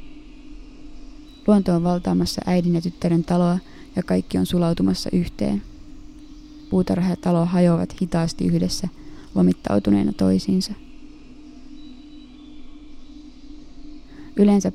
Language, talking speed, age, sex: Finnish, 85 wpm, 20-39, female